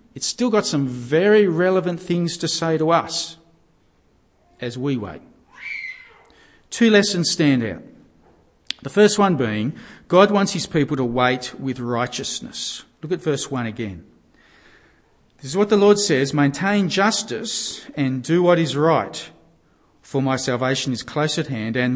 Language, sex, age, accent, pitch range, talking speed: English, male, 40-59, Australian, 125-200 Hz, 155 wpm